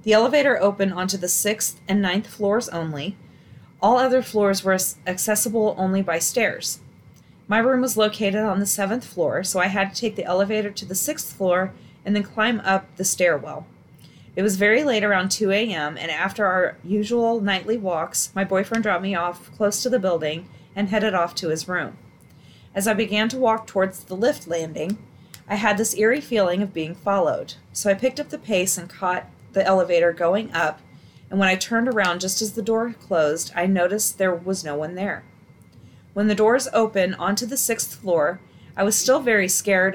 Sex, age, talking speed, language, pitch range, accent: female, 30-49, 195 wpm, English, 175-215 Hz, American